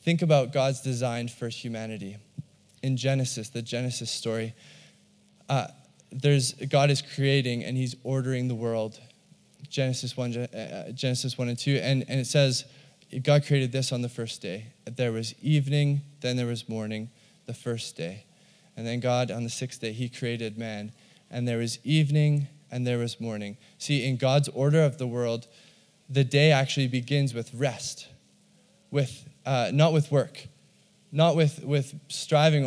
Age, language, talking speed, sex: 20-39, English, 165 wpm, male